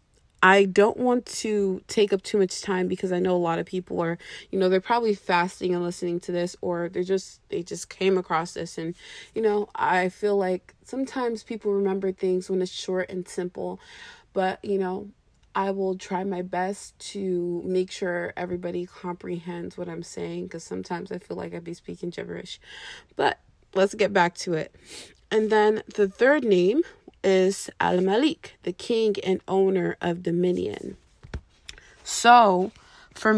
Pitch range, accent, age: 175-205 Hz, American, 20-39